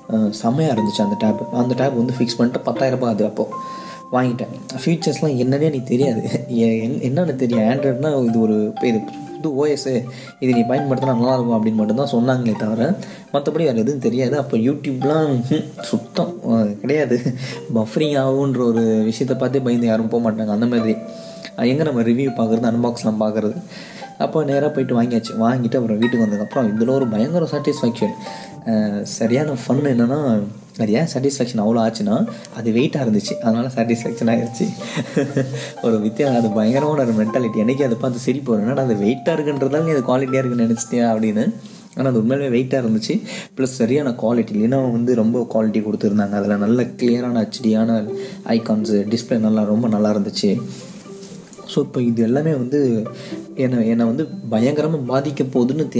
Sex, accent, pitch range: male, native, 115-140 Hz